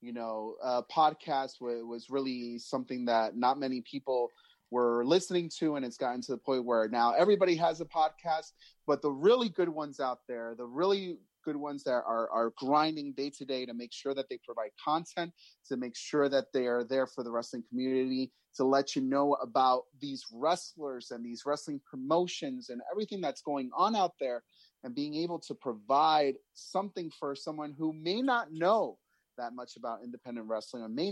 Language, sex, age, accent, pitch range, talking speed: English, male, 30-49, American, 125-160 Hz, 190 wpm